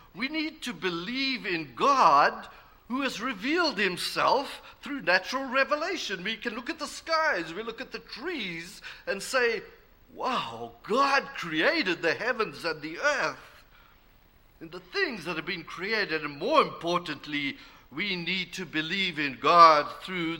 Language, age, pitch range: English, 50-69, 155-245 Hz